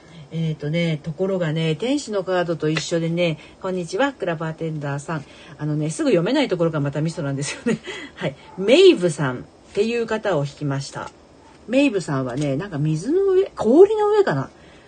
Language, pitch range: Japanese, 150-245 Hz